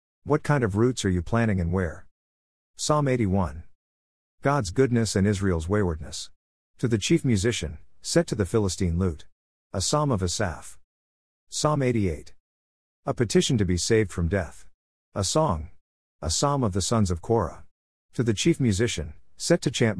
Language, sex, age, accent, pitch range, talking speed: English, male, 50-69, American, 80-115 Hz, 160 wpm